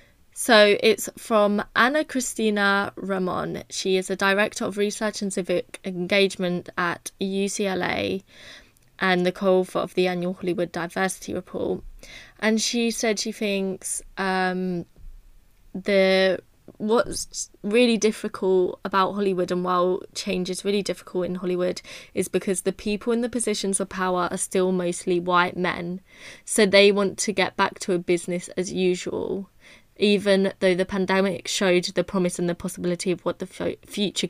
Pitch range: 180-200 Hz